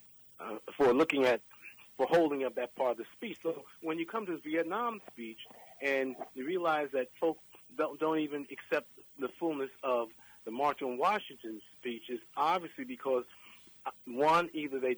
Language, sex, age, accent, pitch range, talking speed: English, male, 40-59, American, 125-165 Hz, 170 wpm